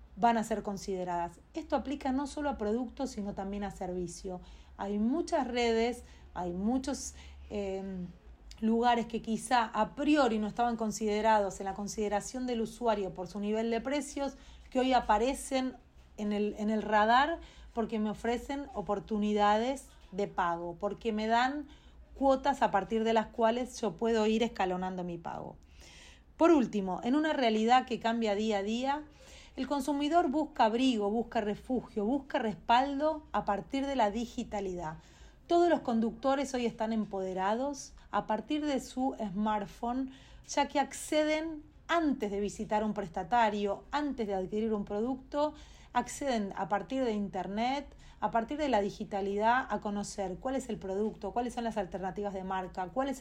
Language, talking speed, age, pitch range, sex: Italian, 155 wpm, 30-49, 205-260 Hz, female